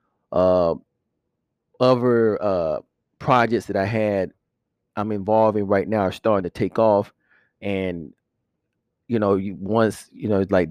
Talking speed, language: 135 wpm, English